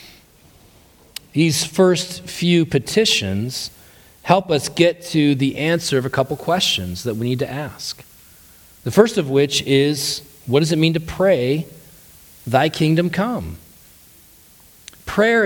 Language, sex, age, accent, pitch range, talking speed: English, male, 40-59, American, 130-180 Hz, 130 wpm